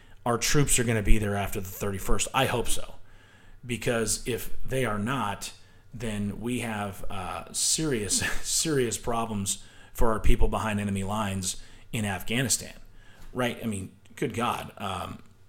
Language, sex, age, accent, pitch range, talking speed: English, male, 30-49, American, 100-120 Hz, 150 wpm